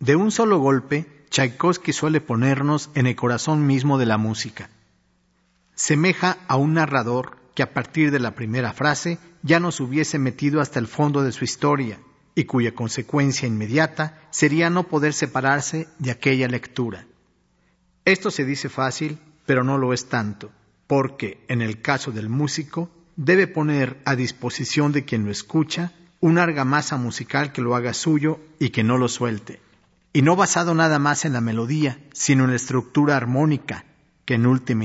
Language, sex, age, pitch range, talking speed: Spanish, male, 50-69, 125-155 Hz, 165 wpm